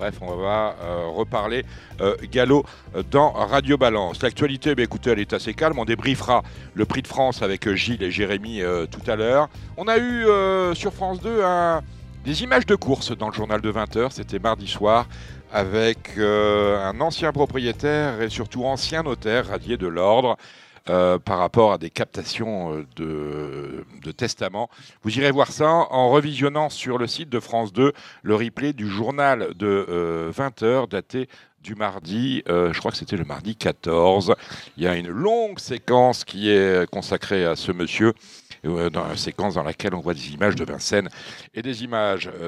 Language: French